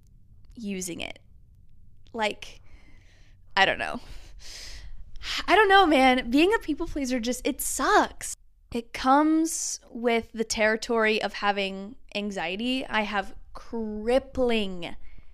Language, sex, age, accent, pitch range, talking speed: English, female, 10-29, American, 210-255 Hz, 110 wpm